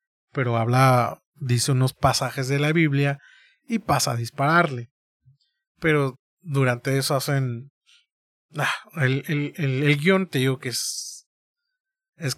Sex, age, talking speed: male, 30-49, 130 wpm